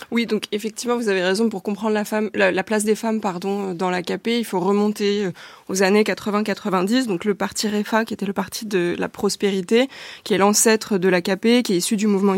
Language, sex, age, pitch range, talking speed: French, female, 20-39, 195-225 Hz, 220 wpm